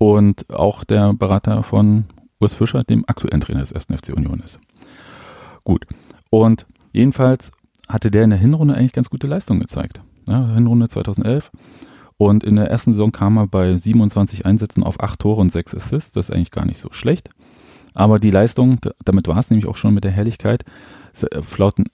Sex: male